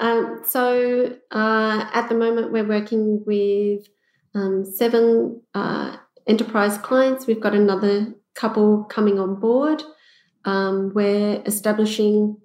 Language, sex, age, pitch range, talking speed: English, female, 30-49, 205-230 Hz, 115 wpm